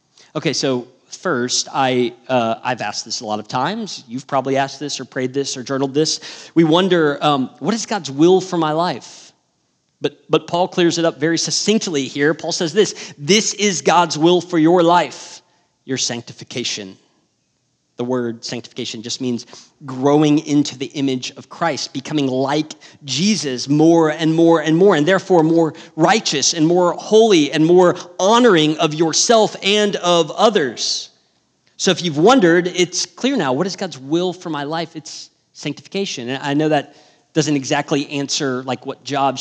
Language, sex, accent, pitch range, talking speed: English, male, American, 130-170 Hz, 170 wpm